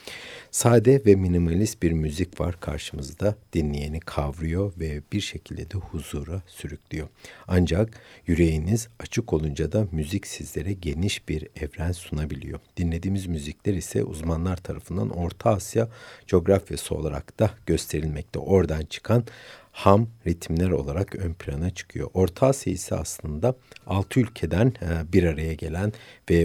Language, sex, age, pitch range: Turkish, male, 60-79, 80-105 Hz